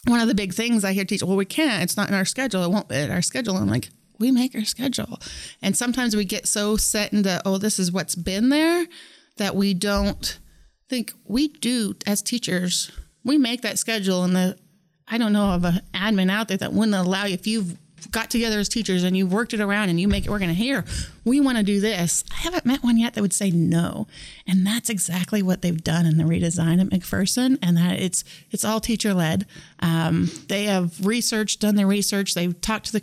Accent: American